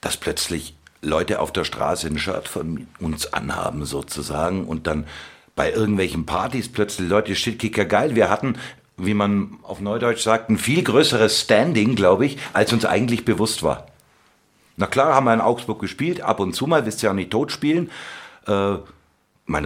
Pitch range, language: 85-110 Hz, English